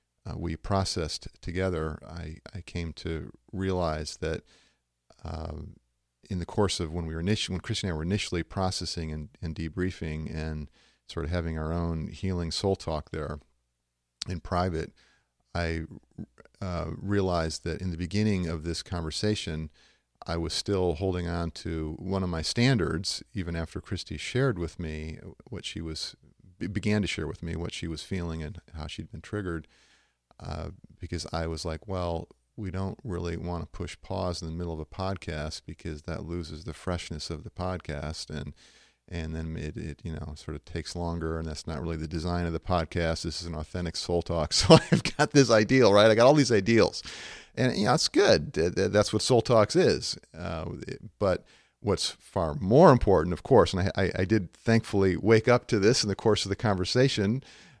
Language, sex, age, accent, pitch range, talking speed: English, male, 40-59, American, 80-95 Hz, 190 wpm